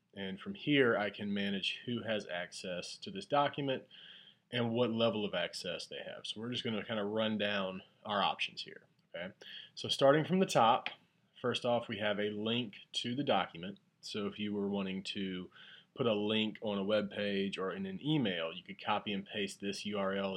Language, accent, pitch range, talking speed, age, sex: English, American, 100-130 Hz, 205 wpm, 30-49, male